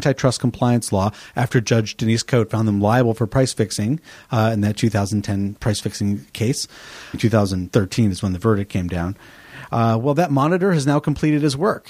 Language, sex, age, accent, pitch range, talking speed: English, male, 40-59, American, 115-150 Hz, 180 wpm